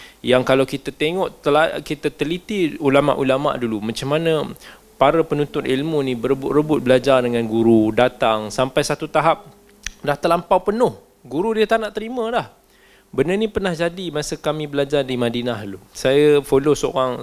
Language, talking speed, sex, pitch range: Malay, 155 wpm, male, 135-195 Hz